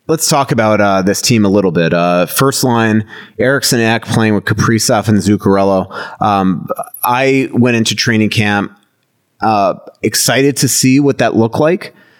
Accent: American